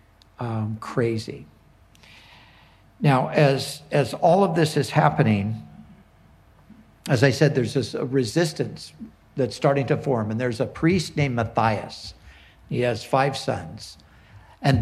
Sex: male